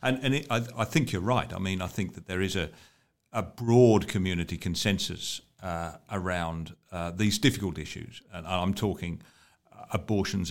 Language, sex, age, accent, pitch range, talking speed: English, male, 50-69, British, 85-105 Hz, 170 wpm